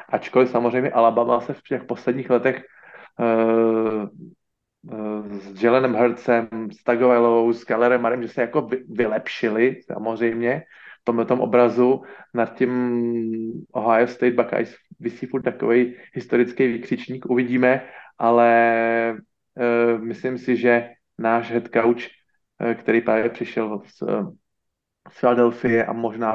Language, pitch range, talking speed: Slovak, 115-125 Hz, 115 wpm